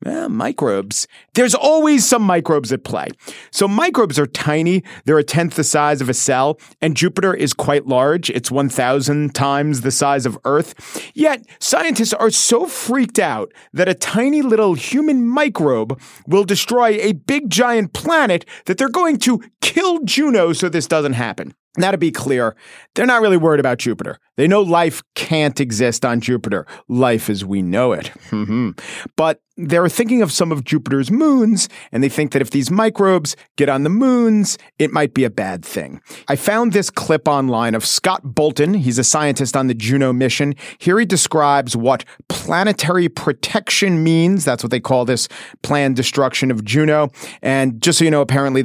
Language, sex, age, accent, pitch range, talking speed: English, male, 40-59, American, 130-200 Hz, 180 wpm